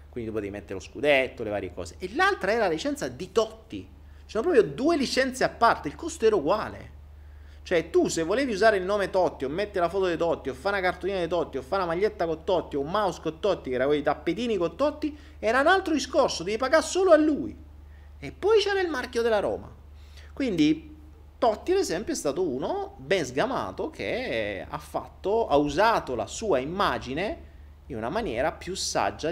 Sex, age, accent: male, 30-49, native